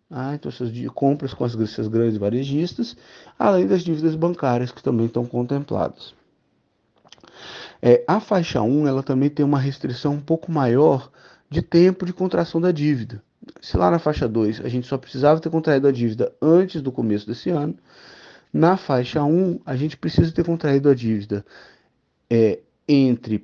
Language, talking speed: Portuguese, 165 wpm